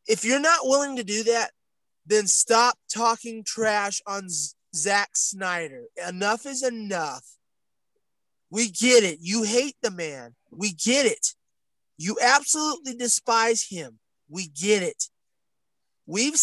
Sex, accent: male, American